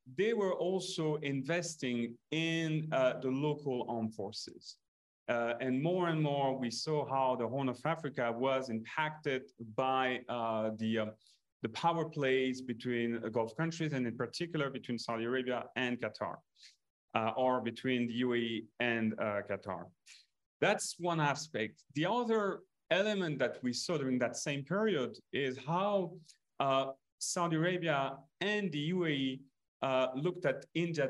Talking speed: 145 wpm